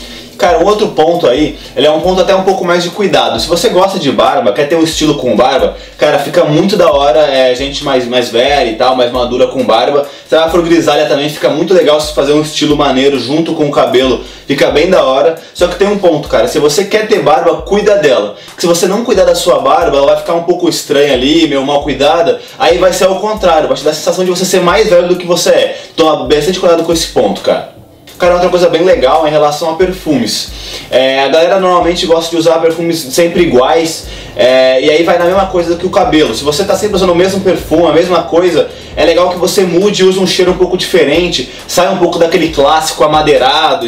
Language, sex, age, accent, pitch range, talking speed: Portuguese, male, 20-39, Brazilian, 150-180 Hz, 240 wpm